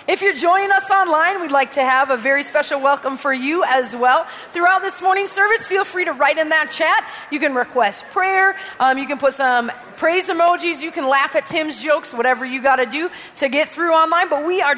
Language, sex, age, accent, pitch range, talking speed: English, female, 30-49, American, 255-335 Hz, 230 wpm